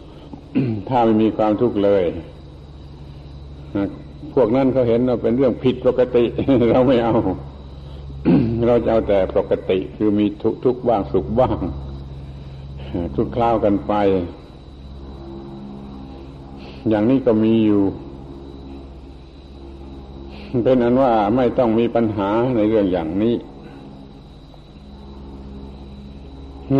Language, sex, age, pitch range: Thai, male, 70-89, 70-115 Hz